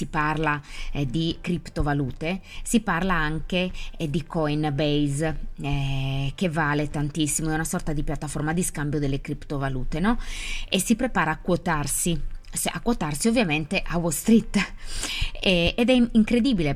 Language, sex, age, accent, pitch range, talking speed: Italian, female, 20-39, native, 145-175 Hz, 145 wpm